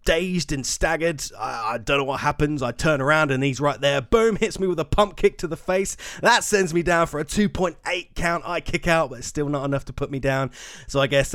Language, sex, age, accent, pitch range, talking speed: English, male, 30-49, British, 130-155 Hz, 260 wpm